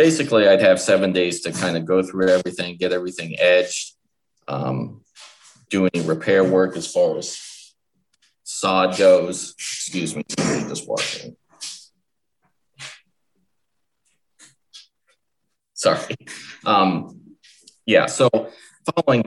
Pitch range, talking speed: 90-95 Hz, 105 wpm